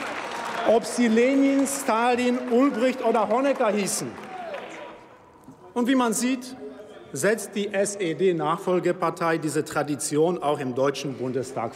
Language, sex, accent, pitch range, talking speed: German, male, German, 155-235 Hz, 105 wpm